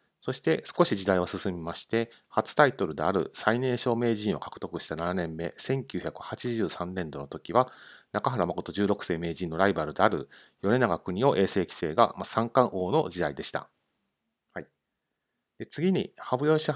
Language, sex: Japanese, male